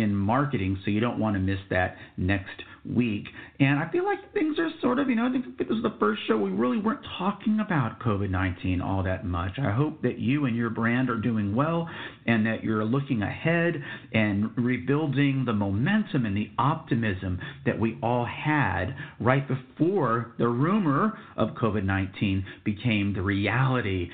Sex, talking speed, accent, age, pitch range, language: male, 180 wpm, American, 50-69, 105-150 Hz, English